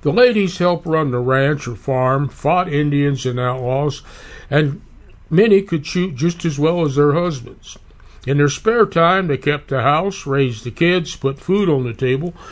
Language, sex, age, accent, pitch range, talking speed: English, male, 60-79, American, 130-165 Hz, 180 wpm